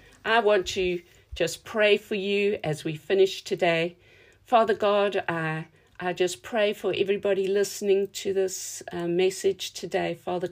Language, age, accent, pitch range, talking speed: English, 50-69, British, 180-205 Hz, 150 wpm